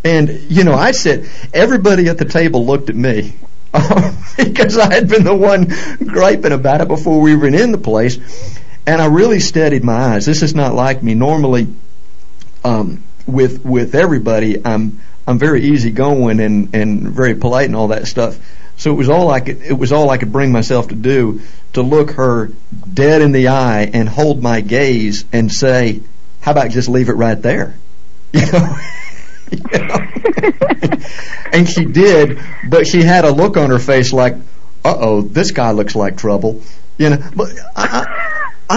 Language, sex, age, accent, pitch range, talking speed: English, male, 50-69, American, 115-170 Hz, 180 wpm